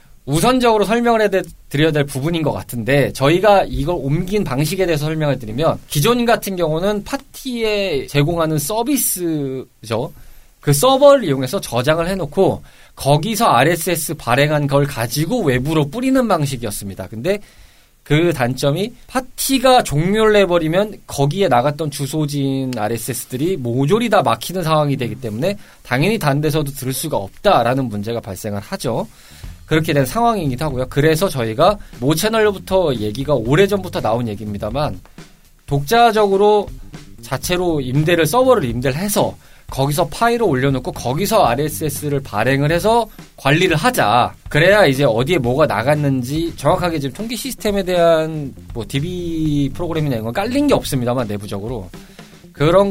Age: 20-39